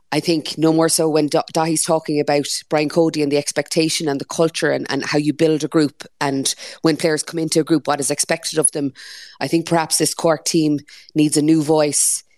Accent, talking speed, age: Irish, 225 wpm, 20-39